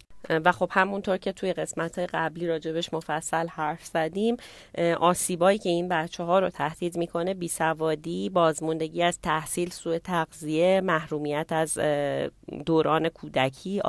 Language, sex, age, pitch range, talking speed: Persian, female, 30-49, 155-185 Hz, 125 wpm